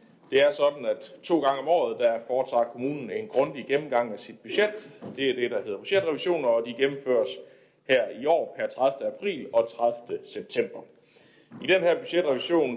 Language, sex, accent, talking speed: Danish, male, native, 185 wpm